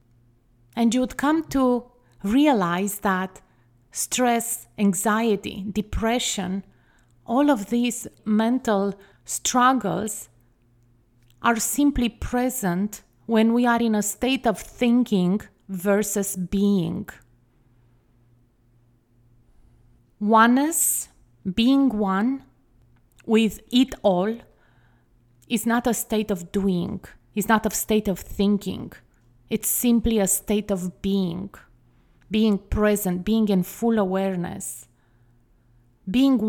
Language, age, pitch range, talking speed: English, 30-49, 175-230 Hz, 95 wpm